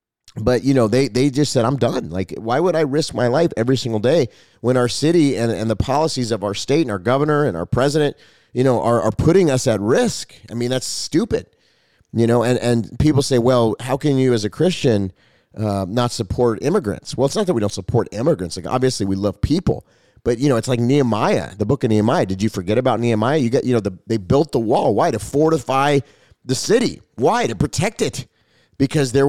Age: 30-49